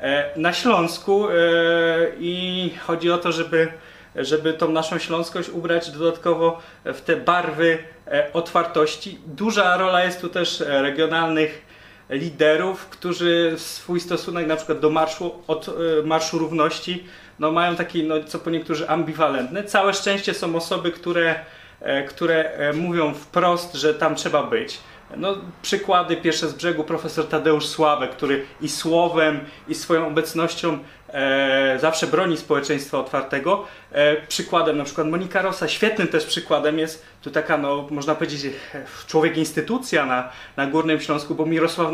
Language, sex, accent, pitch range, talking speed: Polish, male, native, 155-175 Hz, 135 wpm